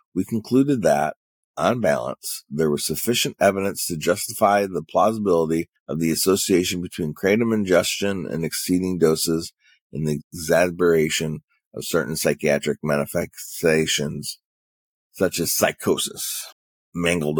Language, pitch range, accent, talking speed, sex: English, 80-105 Hz, American, 115 wpm, male